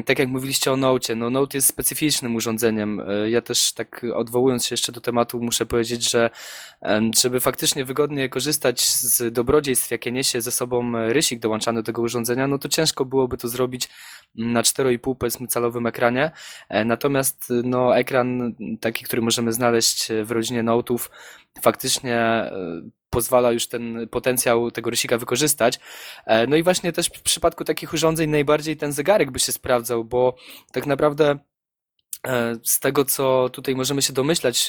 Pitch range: 120-140 Hz